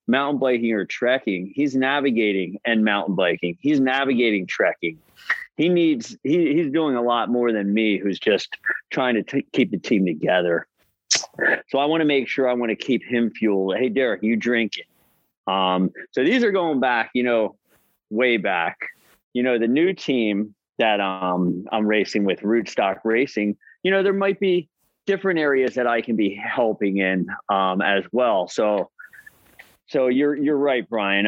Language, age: English, 30-49